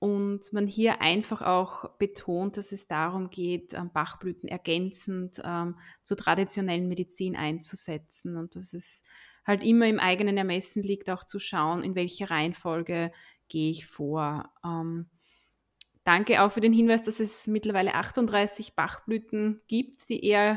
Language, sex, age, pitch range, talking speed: German, female, 20-39, 175-210 Hz, 145 wpm